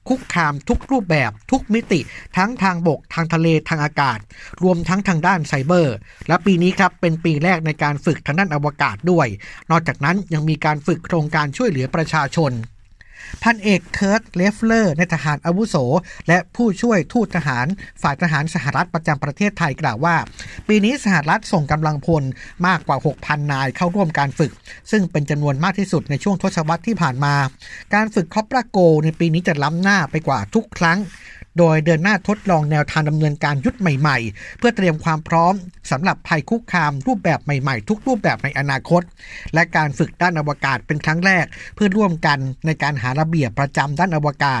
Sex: male